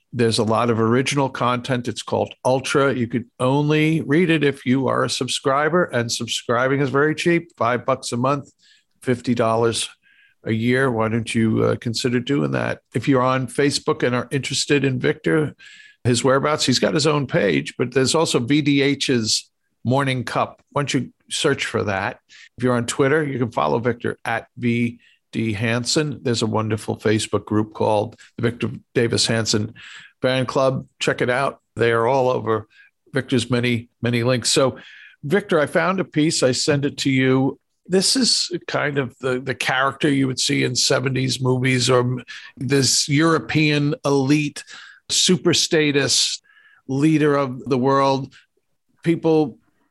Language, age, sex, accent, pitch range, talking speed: English, 50-69, male, American, 120-150 Hz, 160 wpm